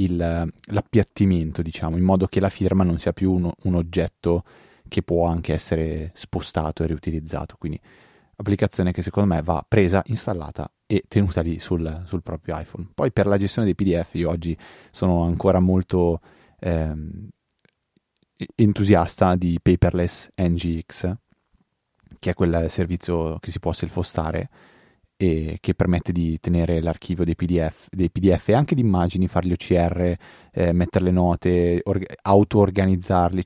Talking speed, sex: 145 wpm, male